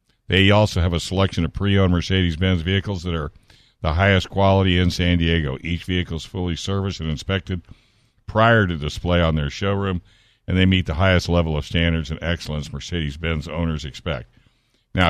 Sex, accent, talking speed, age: male, American, 175 wpm, 60-79